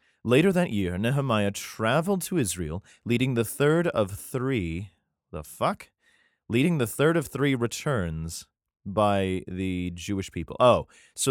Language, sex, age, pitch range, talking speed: English, male, 30-49, 90-130 Hz, 140 wpm